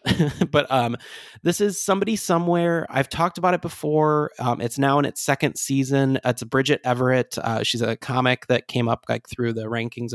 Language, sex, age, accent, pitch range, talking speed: English, male, 20-39, American, 115-140 Hz, 190 wpm